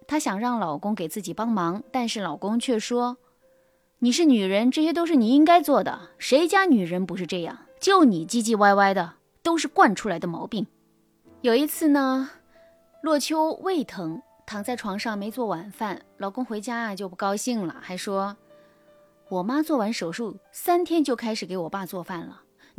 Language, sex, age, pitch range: Chinese, female, 20-39, 185-270 Hz